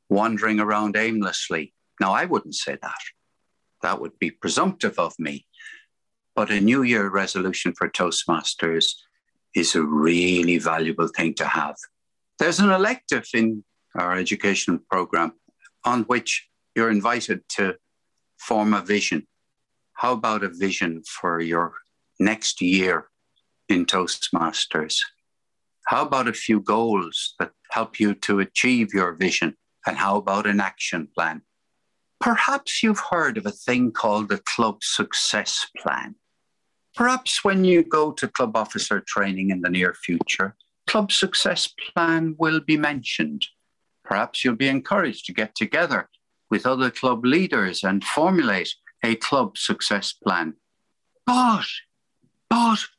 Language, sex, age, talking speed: English, male, 60-79, 135 wpm